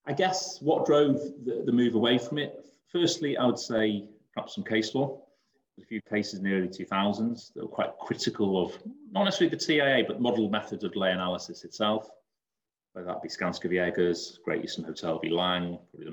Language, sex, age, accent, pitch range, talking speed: English, male, 30-49, British, 85-120 Hz, 205 wpm